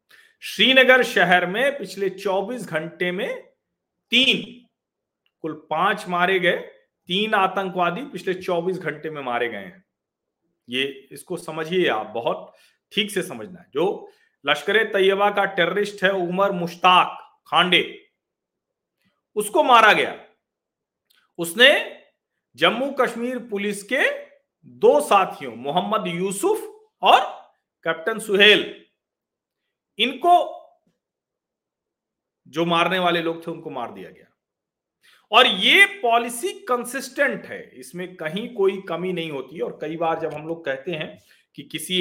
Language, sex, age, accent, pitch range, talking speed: Hindi, male, 50-69, native, 170-255 Hz, 125 wpm